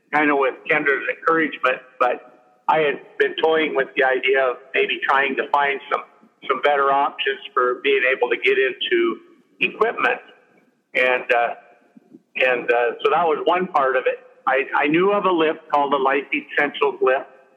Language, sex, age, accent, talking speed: English, male, 50-69, American, 175 wpm